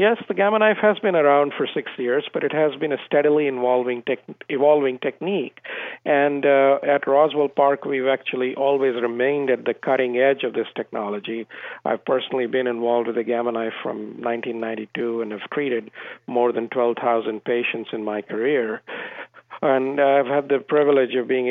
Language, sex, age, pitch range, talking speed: English, male, 50-69, 120-140 Hz, 175 wpm